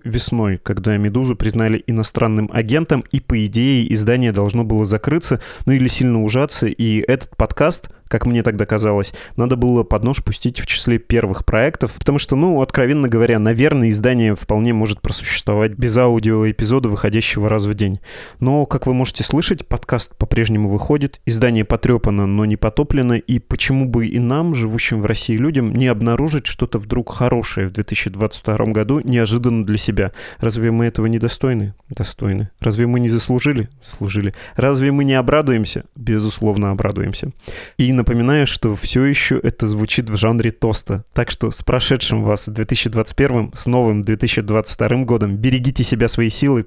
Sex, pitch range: male, 110-125 Hz